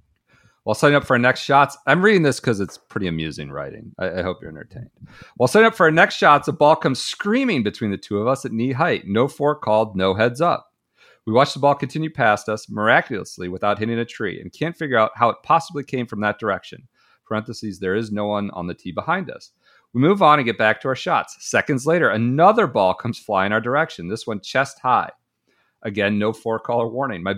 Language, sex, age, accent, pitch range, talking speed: English, male, 40-59, American, 110-155 Hz, 230 wpm